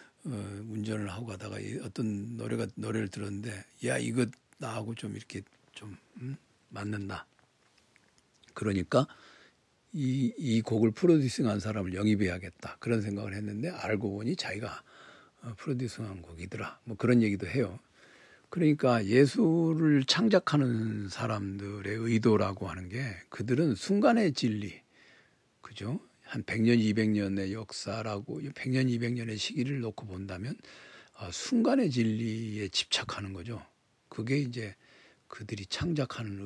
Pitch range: 105-130 Hz